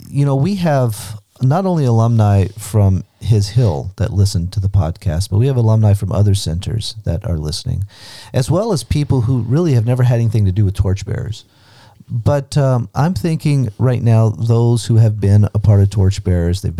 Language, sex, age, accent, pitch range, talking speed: English, male, 40-59, American, 100-120 Hz, 195 wpm